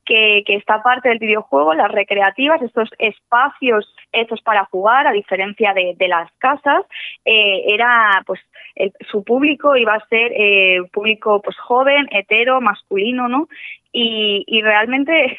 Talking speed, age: 150 wpm, 20-39